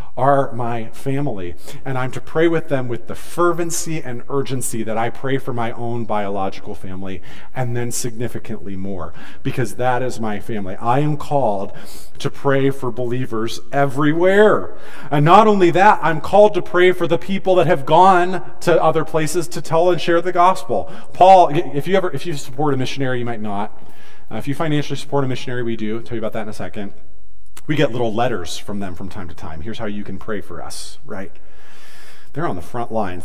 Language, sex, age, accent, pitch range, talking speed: English, male, 40-59, American, 100-150 Hz, 205 wpm